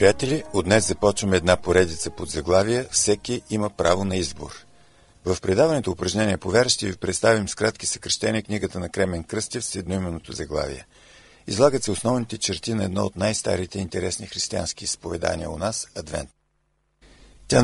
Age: 50-69